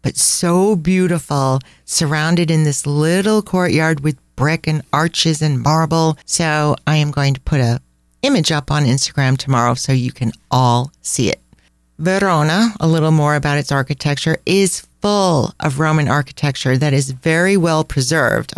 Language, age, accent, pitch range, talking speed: English, 40-59, American, 135-170 Hz, 160 wpm